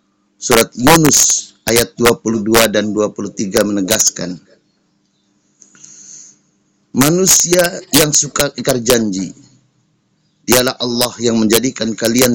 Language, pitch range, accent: Indonesian, 105-130 Hz, native